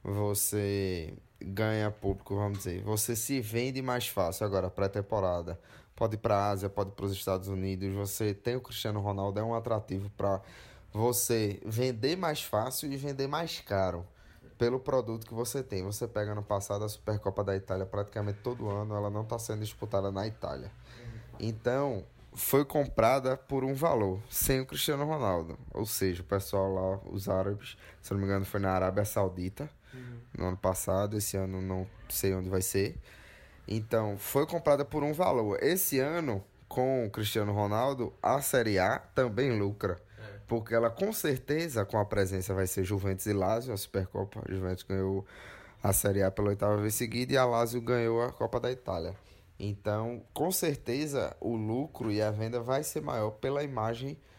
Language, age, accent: Portuguese, 10-29, Brazilian